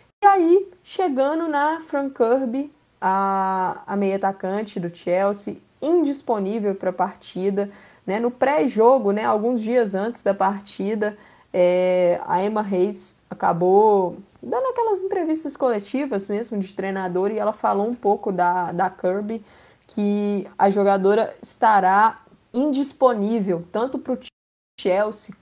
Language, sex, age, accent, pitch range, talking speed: Portuguese, female, 20-39, Brazilian, 195-245 Hz, 125 wpm